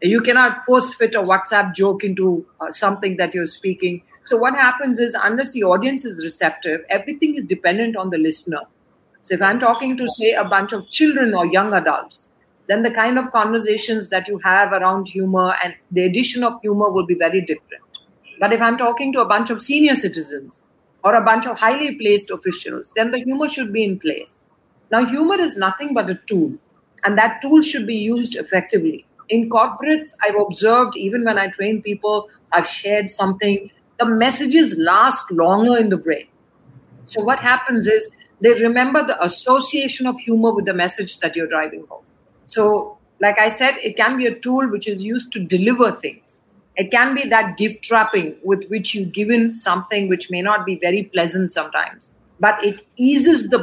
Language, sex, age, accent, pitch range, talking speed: English, female, 50-69, Indian, 190-240 Hz, 190 wpm